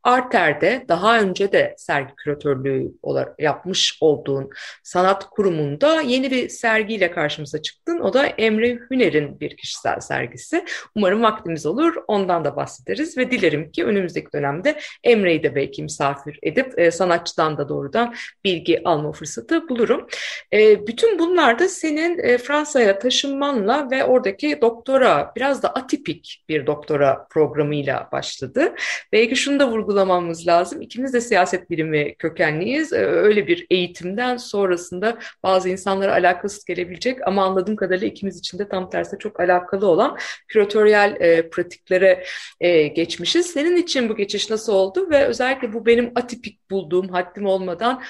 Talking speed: 135 wpm